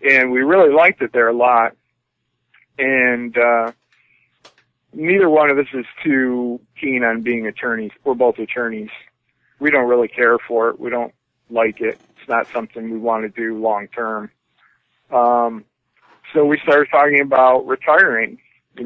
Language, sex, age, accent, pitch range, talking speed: English, male, 40-59, American, 115-125 Hz, 160 wpm